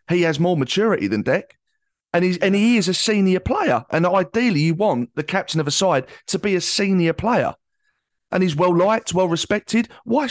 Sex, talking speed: male, 190 wpm